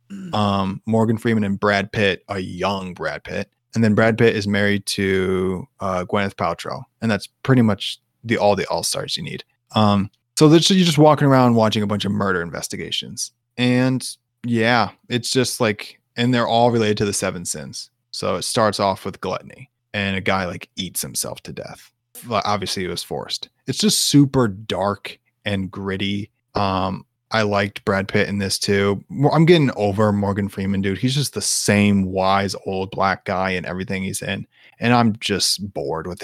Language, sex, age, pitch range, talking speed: English, male, 20-39, 100-120 Hz, 185 wpm